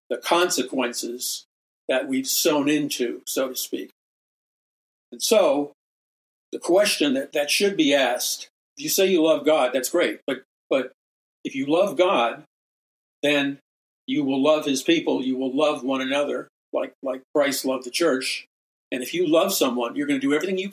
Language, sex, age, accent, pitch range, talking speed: English, male, 50-69, American, 140-190 Hz, 175 wpm